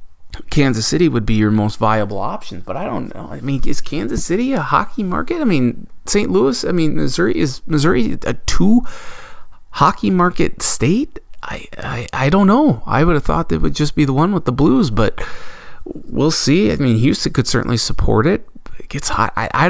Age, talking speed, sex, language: 20-39, 205 wpm, male, English